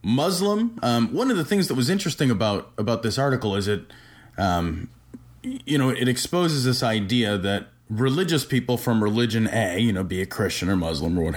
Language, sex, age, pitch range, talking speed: English, male, 30-49, 100-125 Hz, 195 wpm